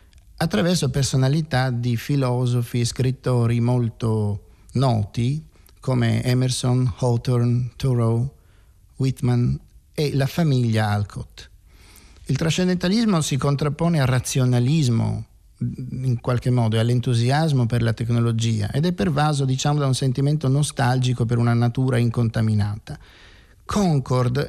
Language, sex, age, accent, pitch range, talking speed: Italian, male, 50-69, native, 115-145 Hz, 110 wpm